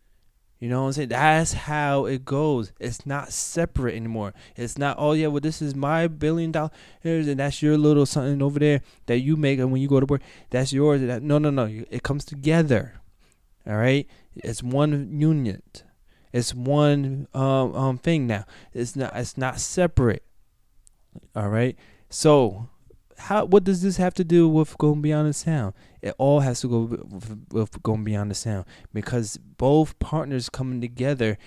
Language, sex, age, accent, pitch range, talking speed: English, male, 20-39, American, 115-150 Hz, 180 wpm